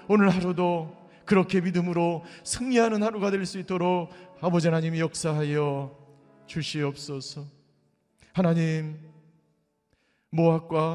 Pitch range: 155-210 Hz